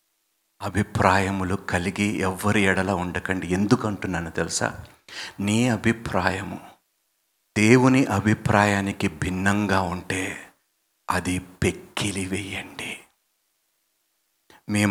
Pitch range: 95-125 Hz